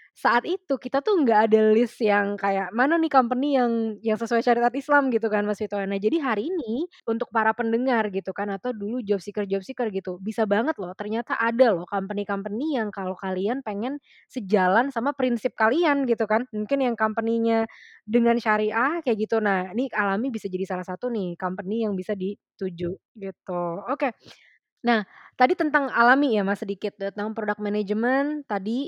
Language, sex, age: Indonesian, female, 20-39